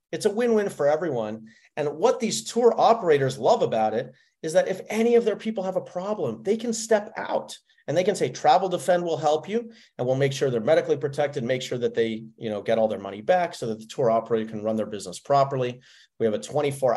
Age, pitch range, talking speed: 40-59, 115-155 Hz, 235 wpm